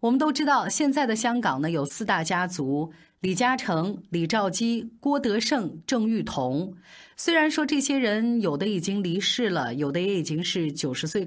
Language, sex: Chinese, female